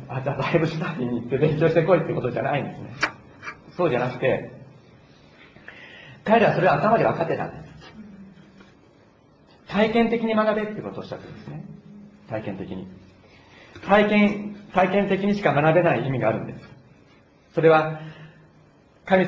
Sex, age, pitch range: male, 40-59, 140-185 Hz